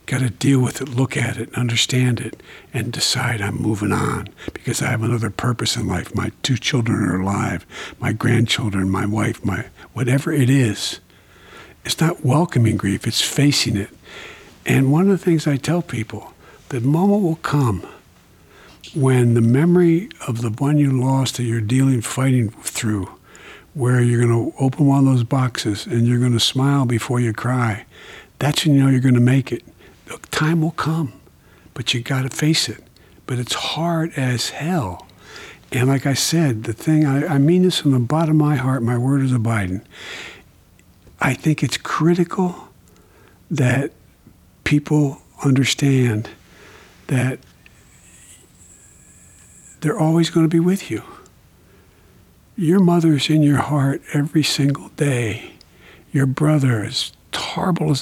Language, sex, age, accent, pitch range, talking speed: English, male, 60-79, American, 110-145 Hz, 160 wpm